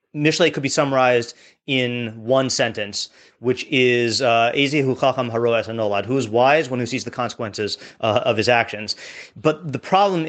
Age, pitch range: 30-49, 115-140 Hz